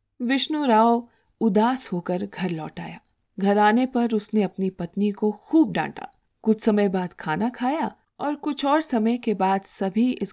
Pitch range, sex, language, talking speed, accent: 185-250 Hz, female, Hindi, 170 wpm, native